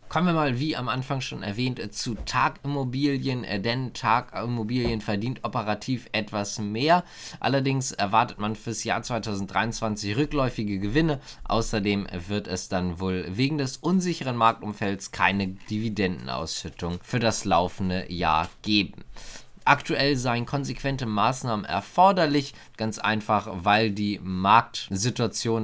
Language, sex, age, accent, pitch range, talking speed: German, male, 20-39, German, 100-125 Hz, 115 wpm